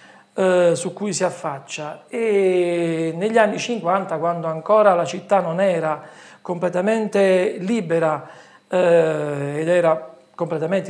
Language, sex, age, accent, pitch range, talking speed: Italian, male, 40-59, native, 170-210 Hz, 110 wpm